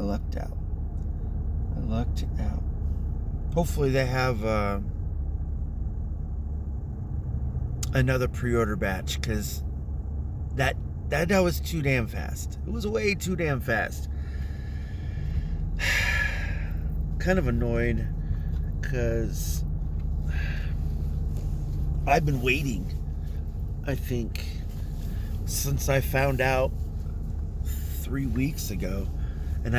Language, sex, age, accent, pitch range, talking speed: English, male, 30-49, American, 75-100 Hz, 85 wpm